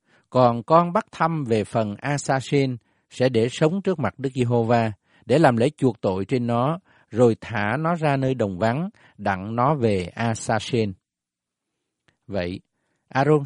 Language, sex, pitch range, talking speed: Vietnamese, male, 110-155 Hz, 150 wpm